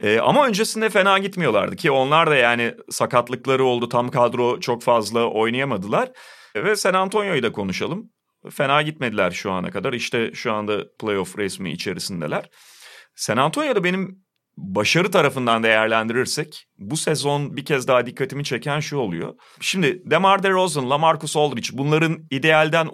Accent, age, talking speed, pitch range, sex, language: native, 40-59, 140 wpm, 125-165 Hz, male, Turkish